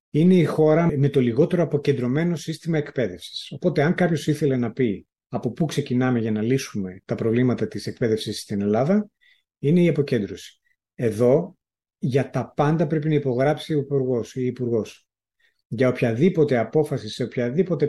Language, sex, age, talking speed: Greek, male, 30-49, 155 wpm